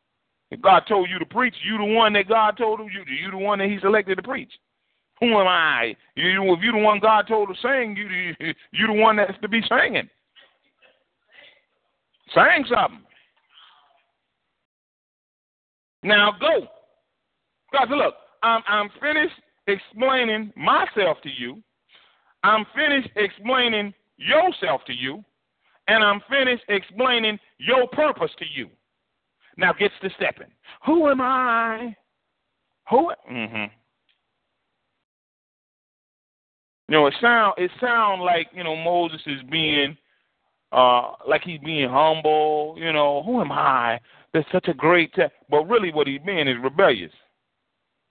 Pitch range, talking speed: 155-225 Hz, 140 wpm